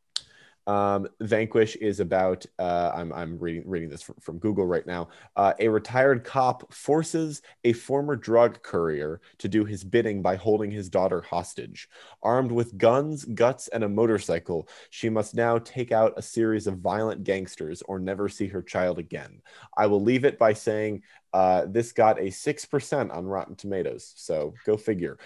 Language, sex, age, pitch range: English, male, 20-39, 100-120 Hz